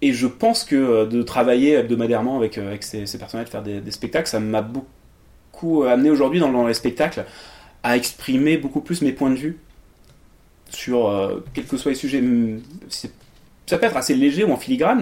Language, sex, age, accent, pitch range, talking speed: French, male, 30-49, French, 105-150 Hz, 195 wpm